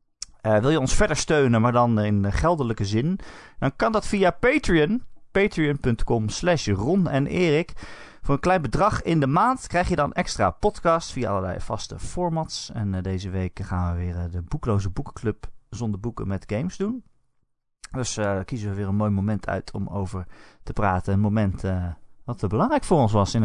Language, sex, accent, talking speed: Dutch, male, Dutch, 200 wpm